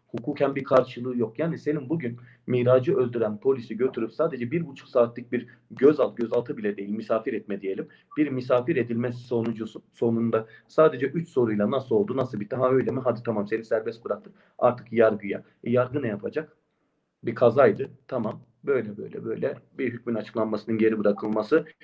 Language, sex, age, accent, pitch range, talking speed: German, male, 40-59, Turkish, 115-150 Hz, 165 wpm